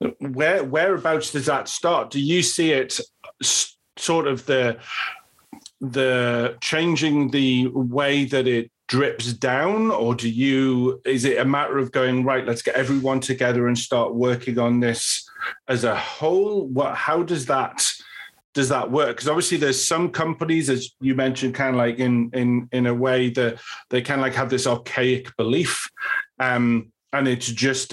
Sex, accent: male, British